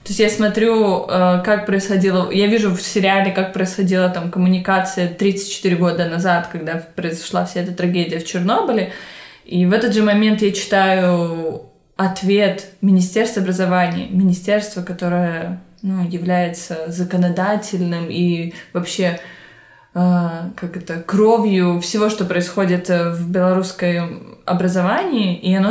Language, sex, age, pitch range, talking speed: Russian, female, 20-39, 175-200 Hz, 120 wpm